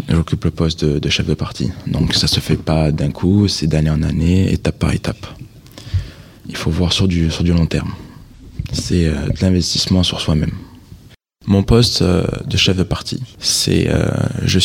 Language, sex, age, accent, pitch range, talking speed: French, male, 20-39, French, 80-115 Hz, 195 wpm